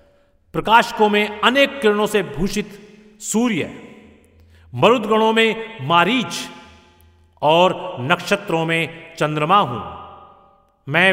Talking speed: 90 wpm